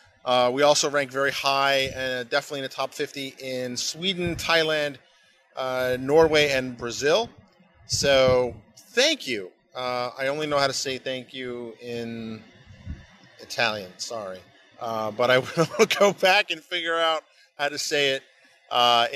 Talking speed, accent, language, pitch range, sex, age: 150 wpm, American, English, 115-140 Hz, male, 30-49